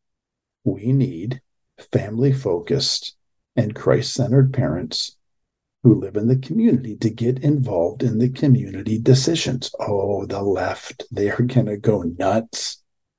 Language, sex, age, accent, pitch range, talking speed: English, male, 50-69, American, 115-135 Hz, 125 wpm